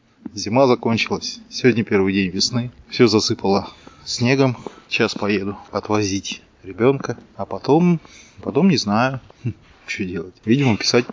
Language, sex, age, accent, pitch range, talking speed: Russian, male, 20-39, native, 95-130 Hz, 120 wpm